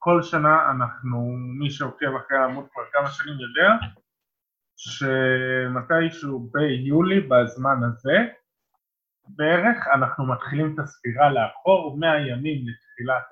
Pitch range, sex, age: 130-165 Hz, male, 20-39